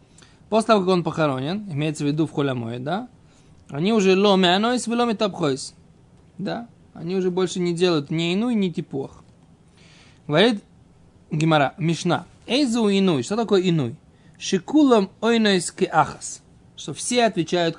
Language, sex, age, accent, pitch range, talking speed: Russian, male, 20-39, native, 155-205 Hz, 140 wpm